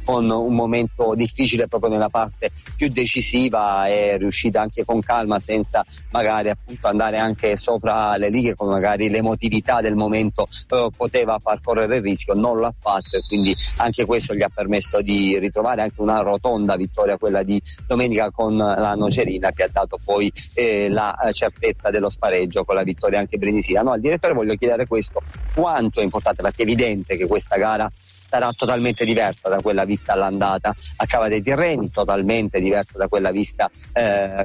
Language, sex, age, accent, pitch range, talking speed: Italian, male, 40-59, native, 100-120 Hz, 175 wpm